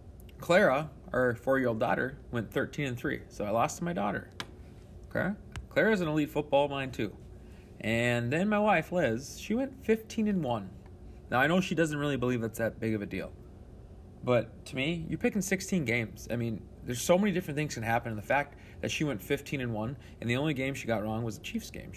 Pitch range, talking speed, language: 105-135 Hz, 225 wpm, English